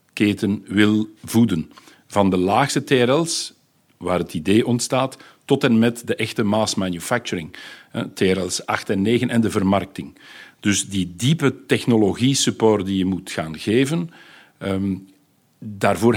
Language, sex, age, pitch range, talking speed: Dutch, male, 50-69, 100-125 Hz, 130 wpm